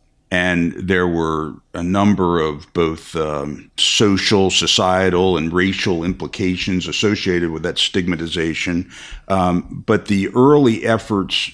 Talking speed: 115 wpm